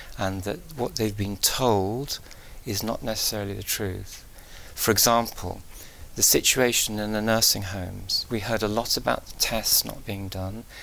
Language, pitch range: English, 100-115 Hz